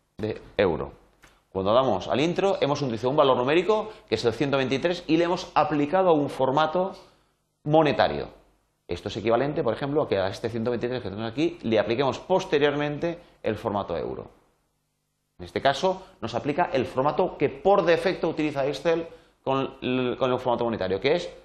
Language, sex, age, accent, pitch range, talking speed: Spanish, male, 30-49, Spanish, 105-160 Hz, 170 wpm